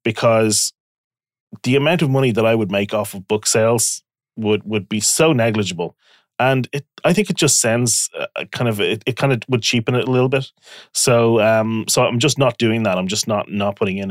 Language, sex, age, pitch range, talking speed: English, male, 30-49, 105-130 Hz, 220 wpm